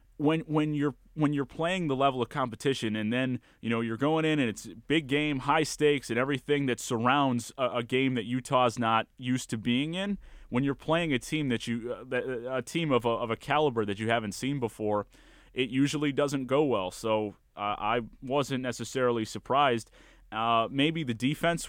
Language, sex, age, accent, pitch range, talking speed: English, male, 30-49, American, 110-135 Hz, 195 wpm